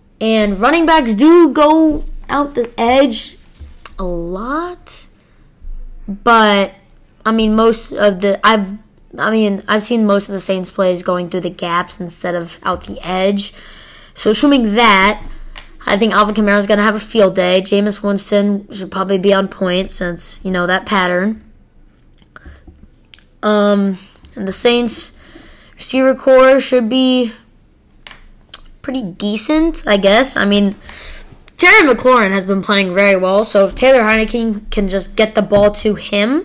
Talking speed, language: 155 wpm, English